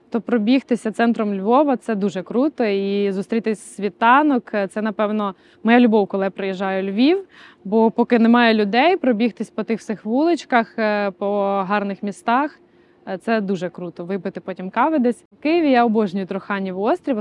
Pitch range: 200-250 Hz